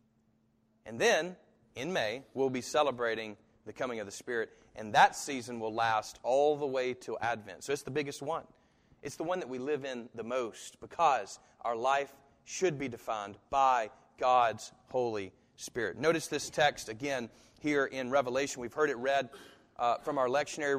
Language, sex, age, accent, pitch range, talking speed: English, male, 40-59, American, 125-150 Hz, 175 wpm